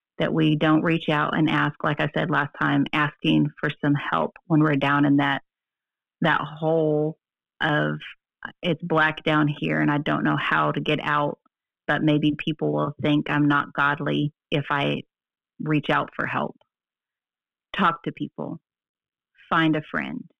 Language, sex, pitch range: English, female, 145-165 Hz